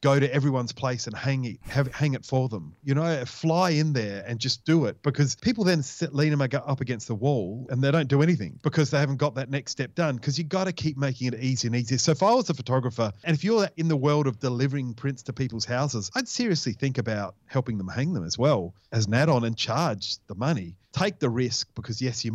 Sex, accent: male, Australian